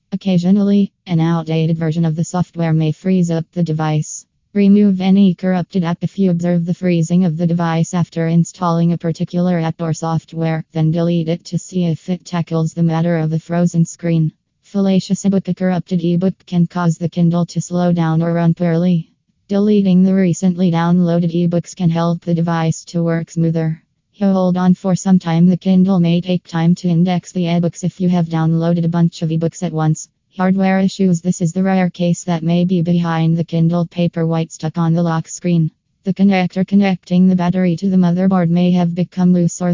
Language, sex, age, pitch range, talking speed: English, female, 20-39, 165-180 Hz, 195 wpm